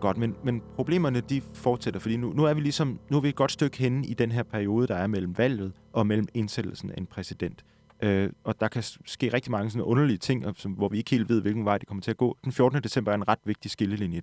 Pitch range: 105-145 Hz